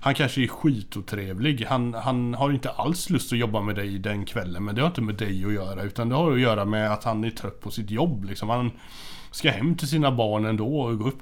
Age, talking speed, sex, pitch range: 30-49, 255 wpm, male, 105-135 Hz